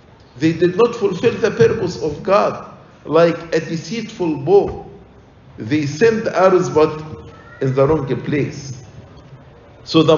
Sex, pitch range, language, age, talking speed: male, 125-180 Hz, English, 50-69, 130 wpm